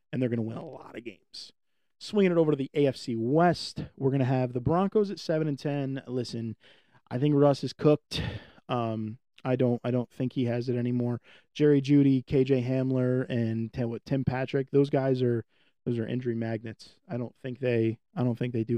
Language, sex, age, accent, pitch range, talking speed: English, male, 20-39, American, 120-140 Hz, 210 wpm